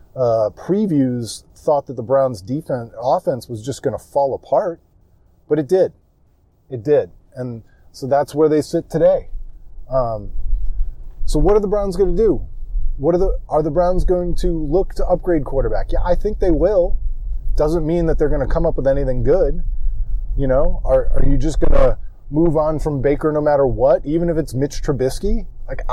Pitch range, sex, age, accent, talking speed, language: 115-155 Hz, male, 20-39, American, 195 wpm, English